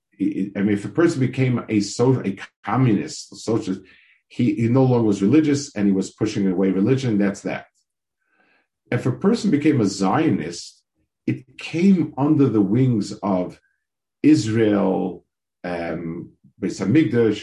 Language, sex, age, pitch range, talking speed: English, male, 50-69, 100-150 Hz, 140 wpm